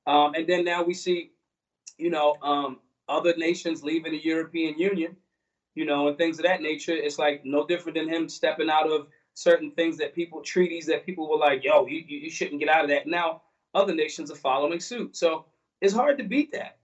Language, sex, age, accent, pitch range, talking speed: English, male, 30-49, American, 150-180 Hz, 215 wpm